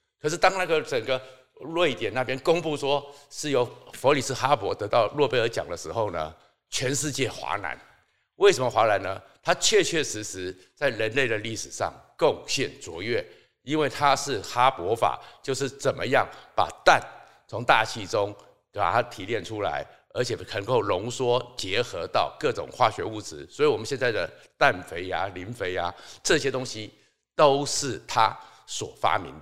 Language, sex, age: Chinese, male, 50-69